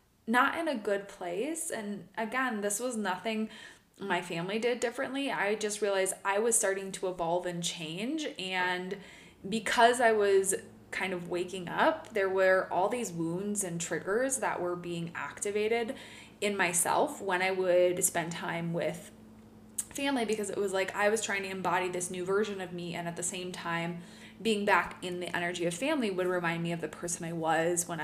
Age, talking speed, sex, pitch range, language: 20-39, 185 wpm, female, 180-225 Hz, English